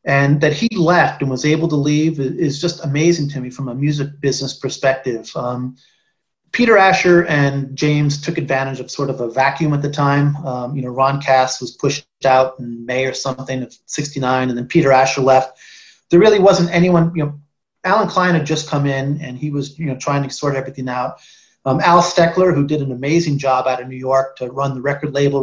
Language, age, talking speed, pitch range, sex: English, 30-49, 215 wpm, 135-155 Hz, male